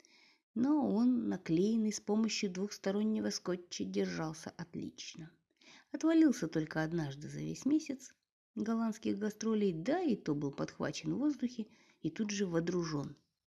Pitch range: 160-240 Hz